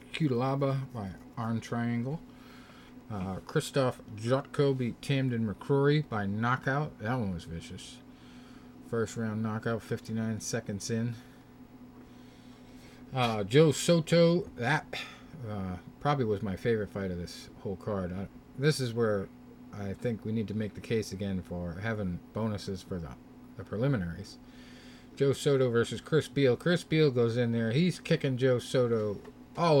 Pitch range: 105-135 Hz